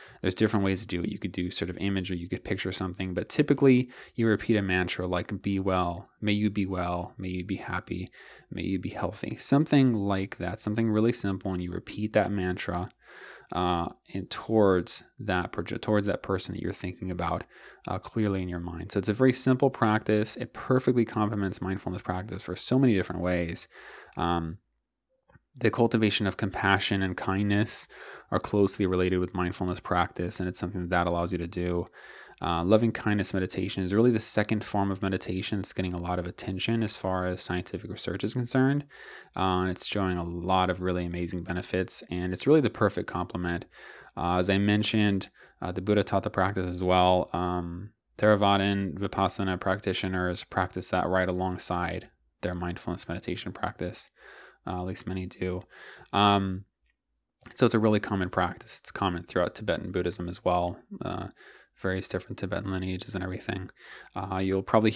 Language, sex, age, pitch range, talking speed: English, male, 20-39, 90-105 Hz, 180 wpm